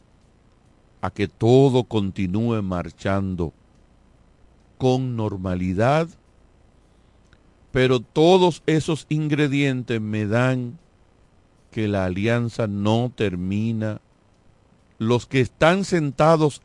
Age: 50-69